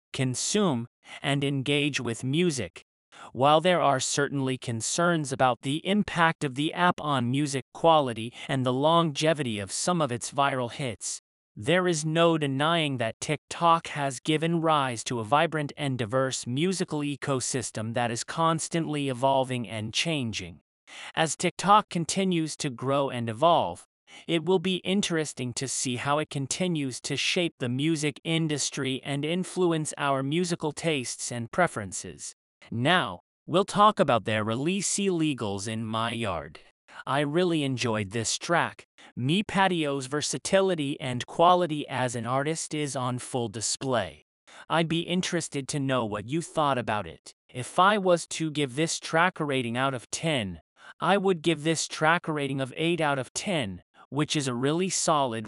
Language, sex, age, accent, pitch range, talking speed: English, male, 40-59, American, 125-165 Hz, 155 wpm